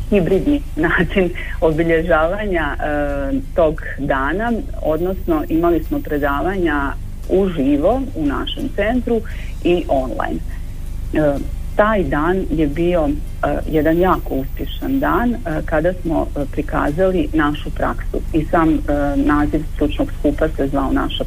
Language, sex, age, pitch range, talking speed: Croatian, female, 40-59, 150-225 Hz, 120 wpm